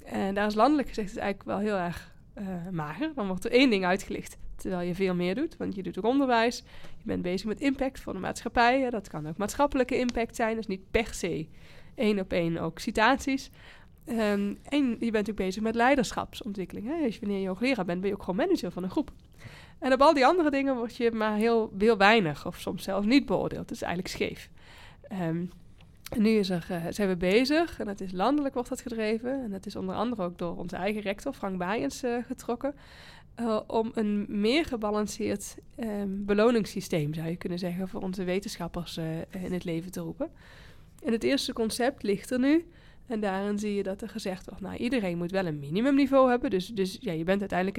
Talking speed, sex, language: 215 wpm, female, Dutch